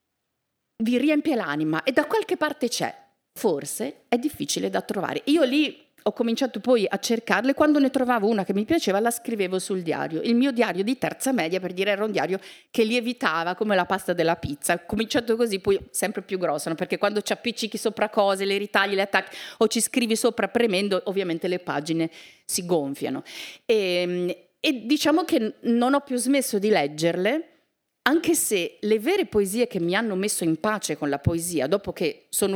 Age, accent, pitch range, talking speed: 40-59, native, 180-250 Hz, 190 wpm